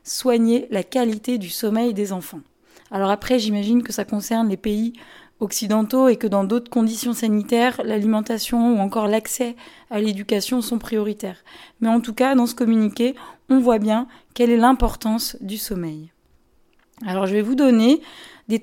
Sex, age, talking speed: female, 20-39, 165 wpm